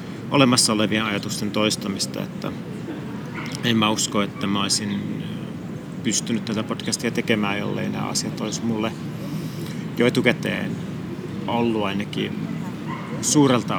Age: 30-49